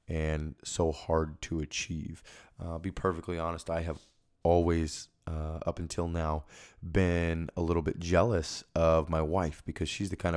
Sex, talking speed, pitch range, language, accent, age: male, 170 wpm, 80-90 Hz, English, American, 20-39